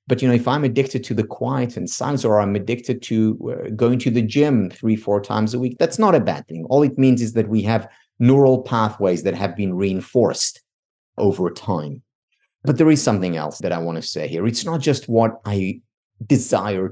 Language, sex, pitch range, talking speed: English, male, 95-125 Hz, 215 wpm